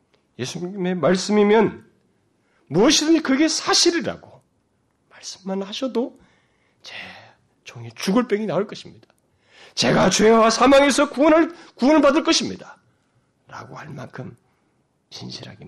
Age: 40-59